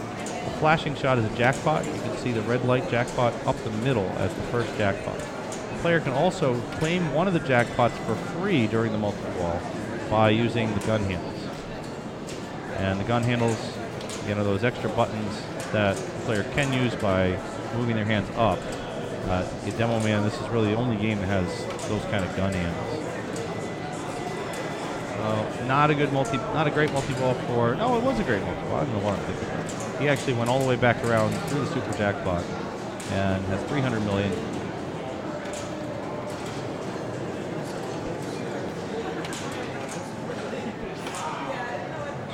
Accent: American